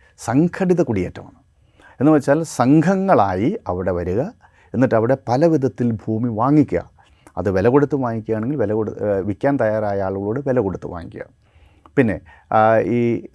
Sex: male